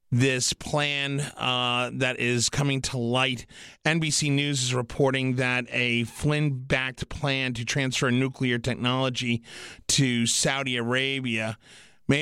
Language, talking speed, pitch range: English, 120 wpm, 120-145 Hz